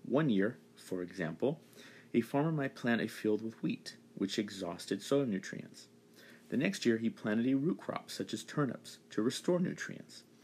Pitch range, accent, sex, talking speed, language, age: 90-115 Hz, American, male, 170 wpm, English, 40-59